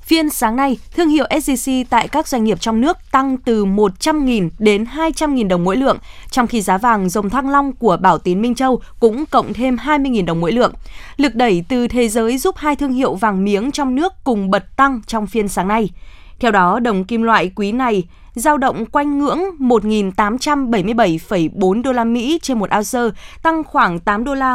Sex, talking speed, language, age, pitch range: female, 205 wpm, Vietnamese, 20-39, 205-270 Hz